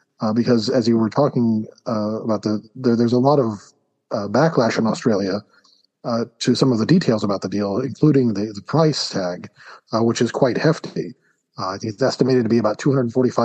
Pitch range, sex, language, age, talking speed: 110-130 Hz, male, English, 40-59, 210 wpm